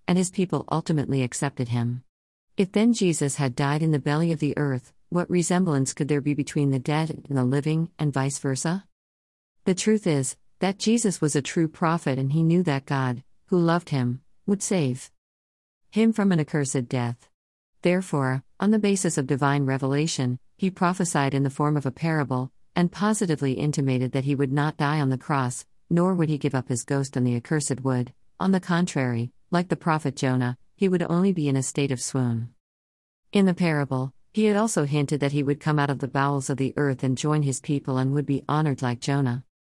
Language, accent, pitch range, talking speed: English, American, 130-165 Hz, 205 wpm